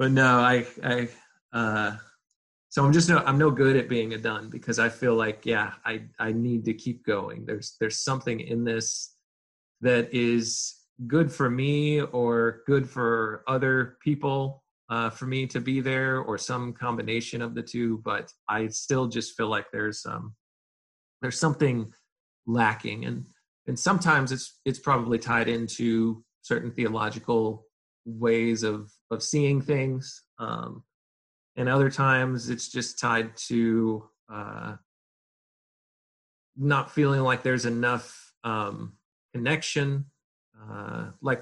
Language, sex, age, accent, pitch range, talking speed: English, male, 30-49, American, 115-130 Hz, 140 wpm